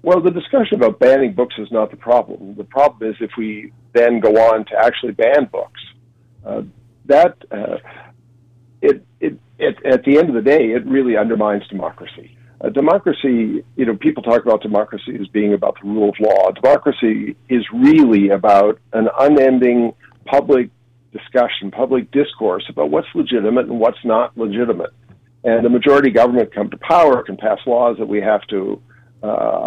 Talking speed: 165 wpm